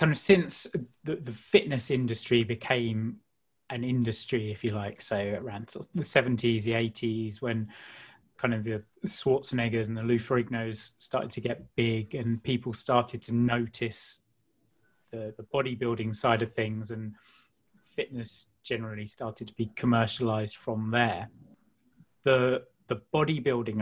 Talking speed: 145 wpm